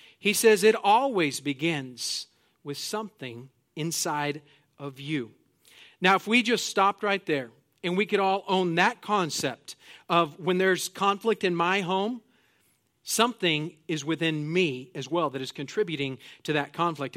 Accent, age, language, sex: American, 40-59, English, male